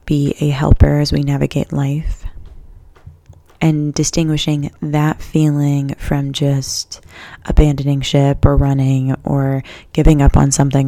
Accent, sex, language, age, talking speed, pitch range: American, female, English, 20-39, 120 wpm, 130-150 Hz